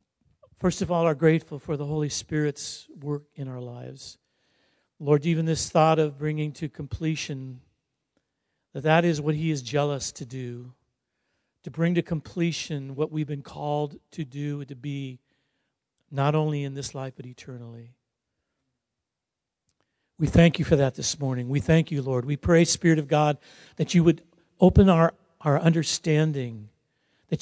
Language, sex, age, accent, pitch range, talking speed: English, male, 50-69, American, 135-160 Hz, 160 wpm